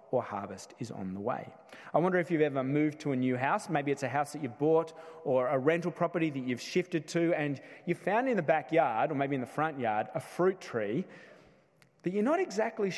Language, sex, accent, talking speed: English, male, Australian, 230 wpm